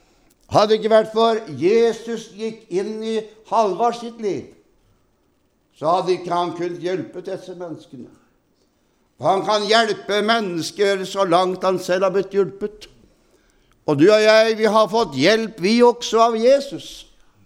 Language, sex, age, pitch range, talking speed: Danish, male, 60-79, 190-225 Hz, 145 wpm